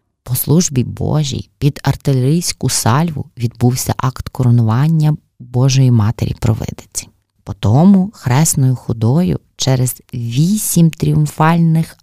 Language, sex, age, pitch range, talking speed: Ukrainian, female, 30-49, 125-180 Hz, 85 wpm